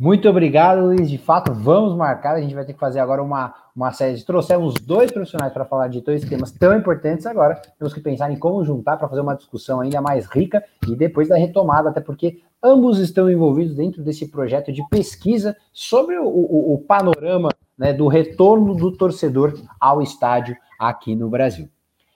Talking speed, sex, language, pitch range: 190 wpm, male, Portuguese, 150-215 Hz